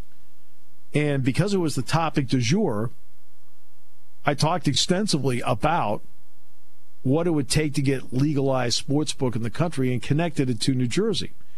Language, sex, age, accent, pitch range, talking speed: English, male, 50-69, American, 105-155 Hz, 155 wpm